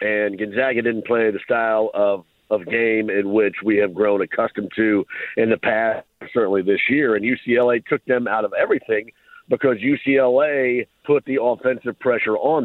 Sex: male